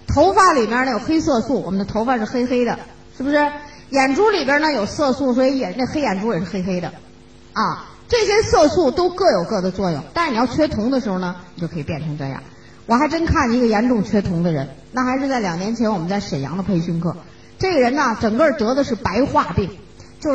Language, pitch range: Chinese, 190-285 Hz